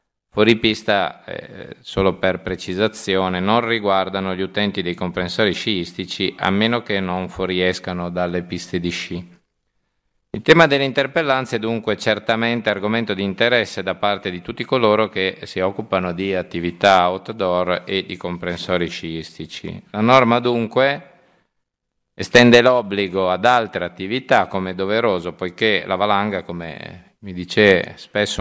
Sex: male